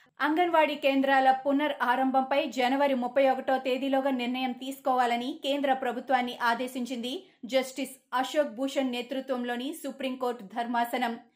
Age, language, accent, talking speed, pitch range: 20-39, Telugu, native, 100 wpm, 240-275 Hz